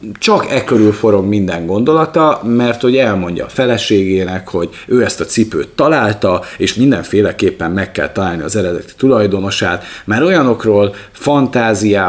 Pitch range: 95-120 Hz